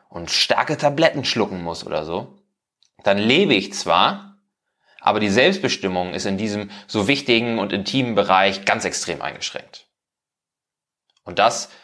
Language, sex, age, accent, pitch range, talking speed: German, male, 30-49, German, 90-115 Hz, 135 wpm